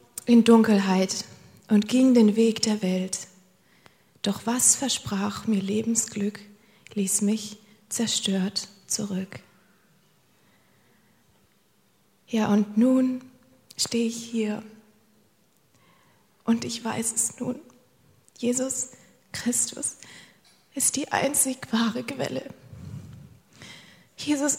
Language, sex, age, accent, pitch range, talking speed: German, female, 20-39, German, 215-250 Hz, 90 wpm